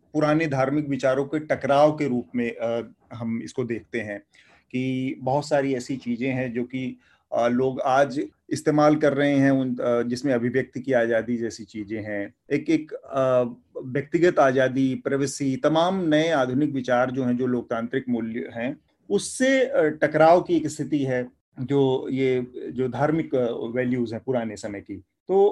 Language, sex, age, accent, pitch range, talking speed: Hindi, male, 30-49, native, 125-150 Hz, 150 wpm